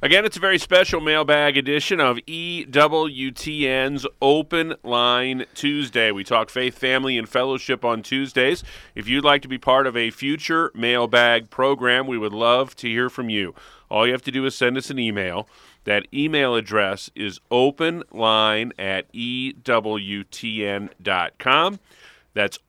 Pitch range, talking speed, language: 110-140 Hz, 150 wpm, English